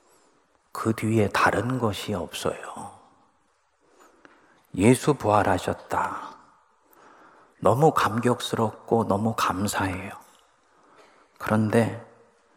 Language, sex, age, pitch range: Korean, male, 40-59, 100-125 Hz